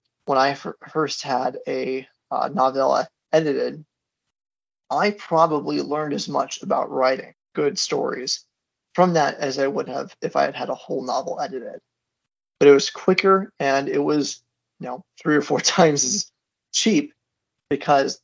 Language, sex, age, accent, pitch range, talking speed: English, male, 20-39, American, 125-155 Hz, 150 wpm